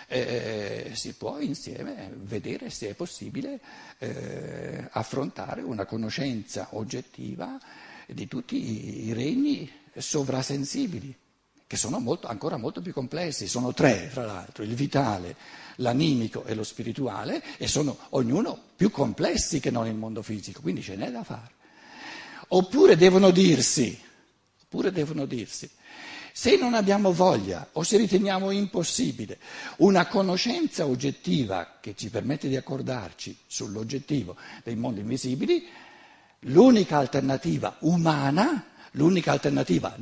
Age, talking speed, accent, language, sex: 60-79, 125 wpm, native, Italian, male